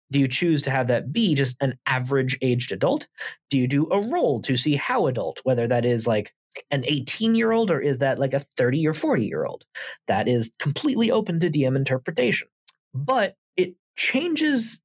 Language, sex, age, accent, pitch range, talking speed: English, male, 20-39, American, 135-205 Hz, 200 wpm